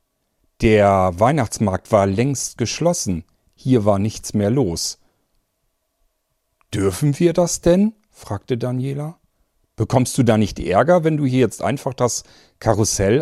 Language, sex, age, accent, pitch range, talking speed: German, male, 40-59, German, 95-125 Hz, 125 wpm